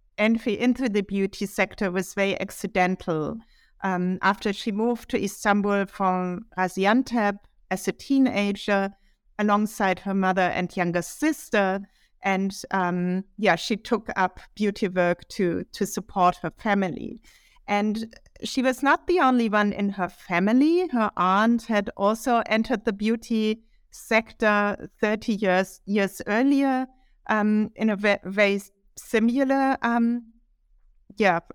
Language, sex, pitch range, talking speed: English, female, 190-225 Hz, 130 wpm